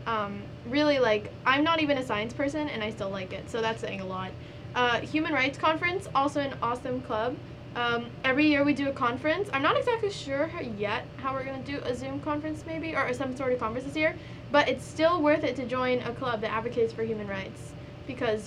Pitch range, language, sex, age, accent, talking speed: 220-275 Hz, English, female, 20-39, American, 225 wpm